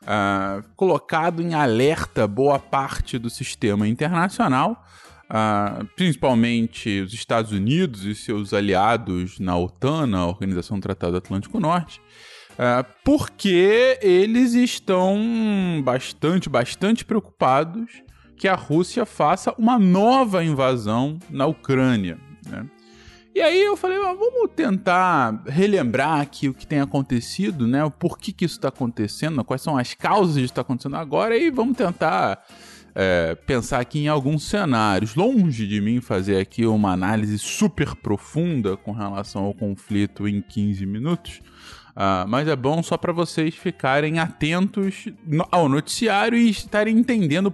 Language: Portuguese